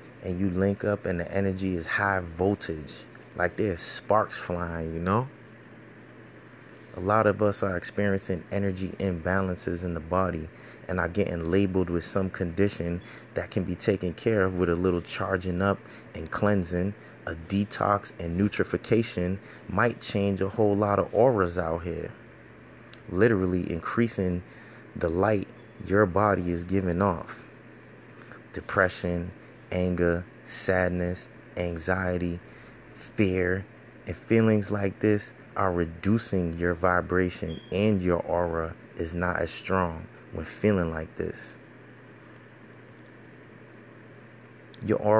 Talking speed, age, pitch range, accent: 125 wpm, 30-49, 90-105 Hz, American